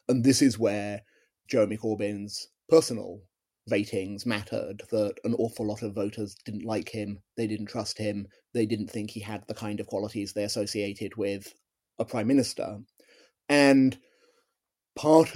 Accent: British